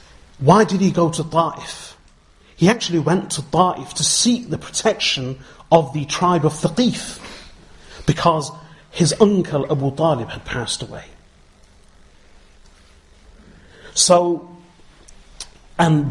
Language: English